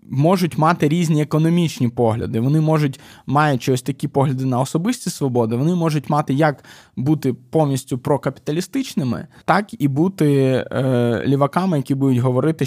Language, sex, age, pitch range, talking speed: Ukrainian, male, 20-39, 125-160 Hz, 135 wpm